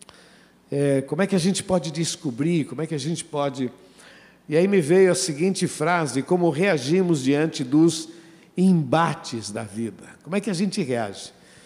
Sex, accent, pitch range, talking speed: male, Brazilian, 130-175 Hz, 170 wpm